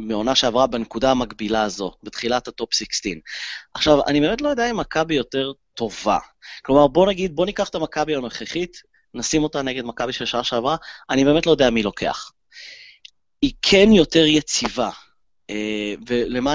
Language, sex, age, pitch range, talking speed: Hebrew, male, 30-49, 120-160 Hz, 155 wpm